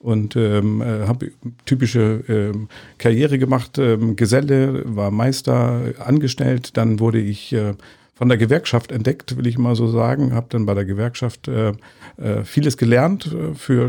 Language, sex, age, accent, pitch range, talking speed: German, male, 50-69, German, 110-130 Hz, 155 wpm